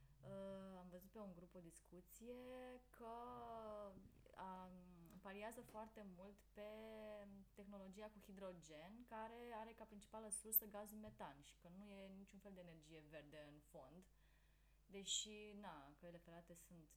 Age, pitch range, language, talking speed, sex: 20-39, 155-205 Hz, Romanian, 140 wpm, female